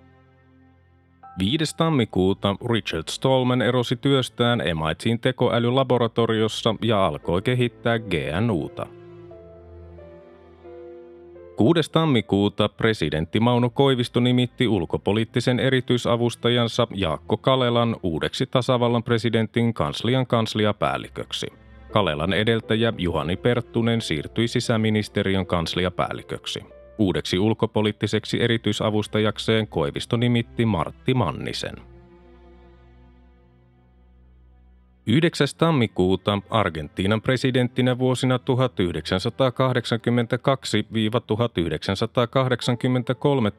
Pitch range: 90-125 Hz